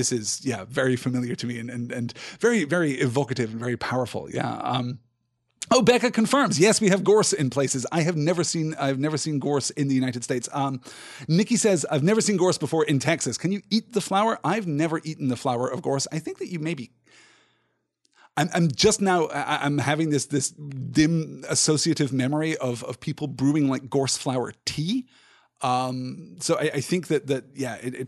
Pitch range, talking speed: 125-160 Hz, 205 wpm